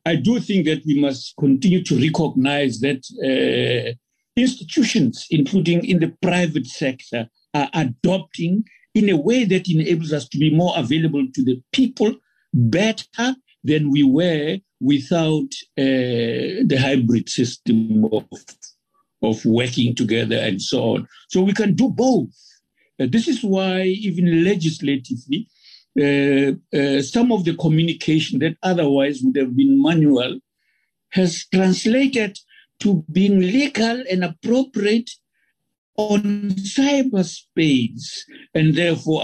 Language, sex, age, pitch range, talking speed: English, male, 60-79, 135-200 Hz, 125 wpm